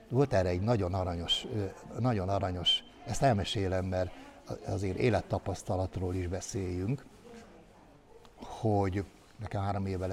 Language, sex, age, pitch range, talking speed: Hungarian, male, 60-79, 95-115 Hz, 105 wpm